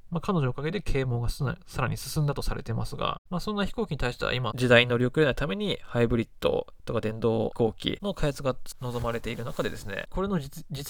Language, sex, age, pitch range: Japanese, male, 20-39, 125-190 Hz